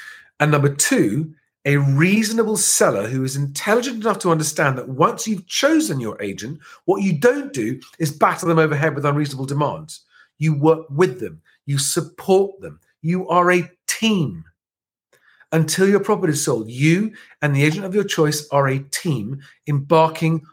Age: 40-59